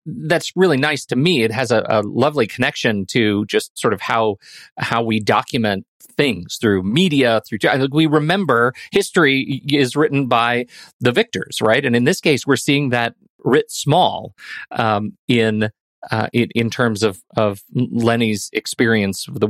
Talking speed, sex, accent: 165 wpm, male, American